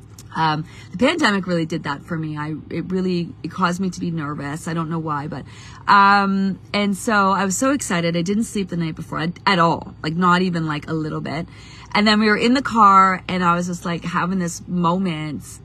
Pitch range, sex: 155-200 Hz, female